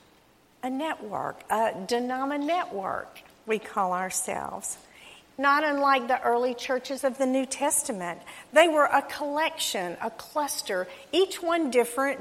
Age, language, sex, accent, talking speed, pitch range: 50-69, English, female, American, 130 wpm, 215-280 Hz